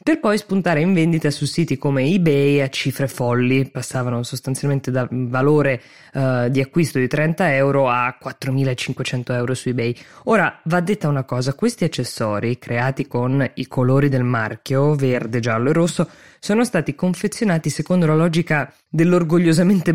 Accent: native